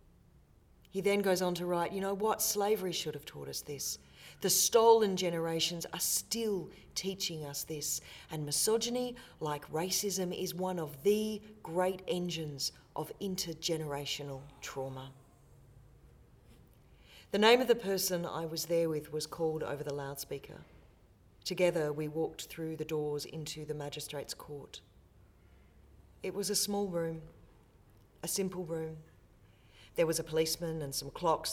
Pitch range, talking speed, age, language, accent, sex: 115-185 Hz, 145 wpm, 40-59, English, Australian, female